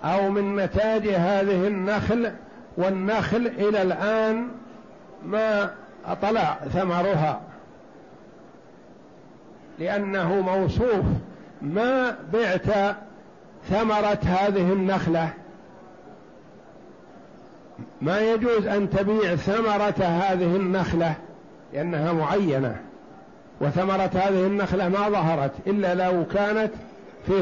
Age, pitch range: 50-69, 180-210 Hz